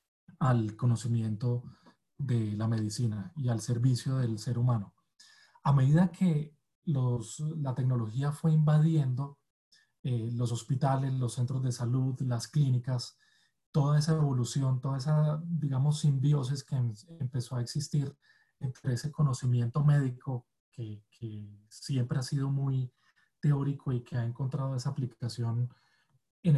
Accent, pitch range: Colombian, 120-150 Hz